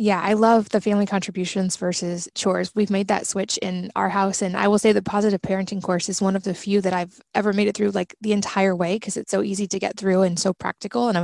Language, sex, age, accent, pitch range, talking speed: English, female, 20-39, American, 185-210 Hz, 265 wpm